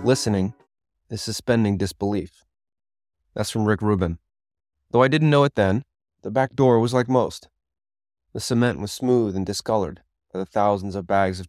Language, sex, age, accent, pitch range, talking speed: English, male, 20-39, American, 90-110 Hz, 165 wpm